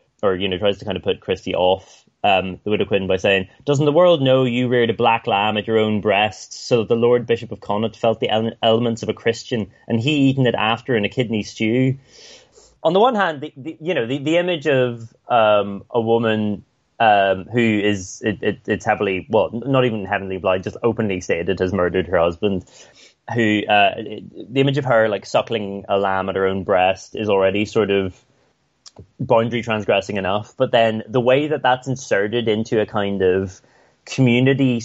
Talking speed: 205 wpm